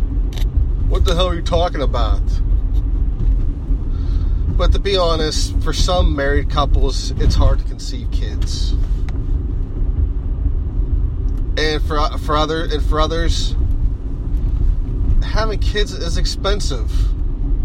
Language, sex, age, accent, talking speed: English, male, 30-49, American, 105 wpm